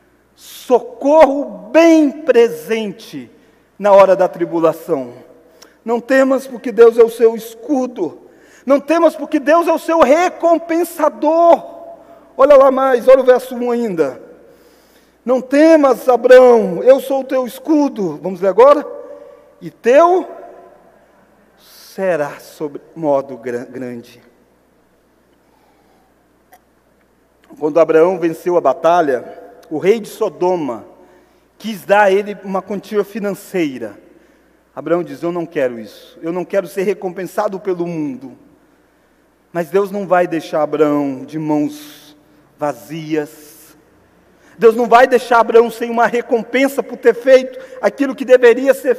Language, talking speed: Portuguese, 125 wpm